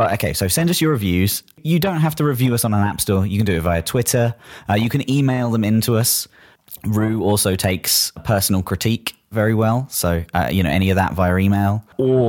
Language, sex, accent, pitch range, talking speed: English, male, British, 85-125 Hz, 225 wpm